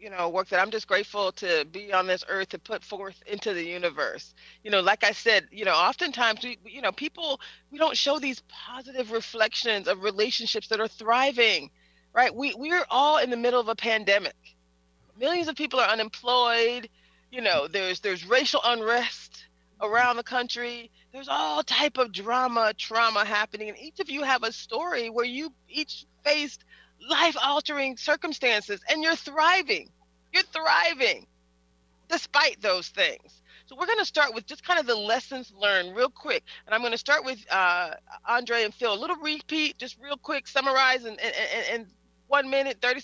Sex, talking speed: female, 185 wpm